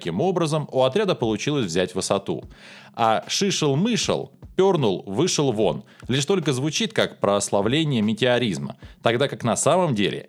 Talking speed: 120 wpm